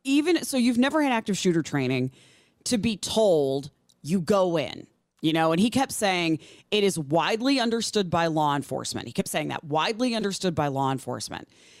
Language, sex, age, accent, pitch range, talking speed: English, female, 30-49, American, 160-235 Hz, 185 wpm